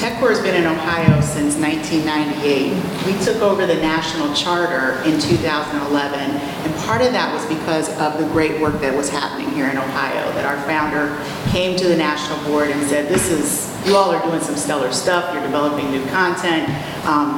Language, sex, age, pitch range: English, female, 40-59, 150-175 Hz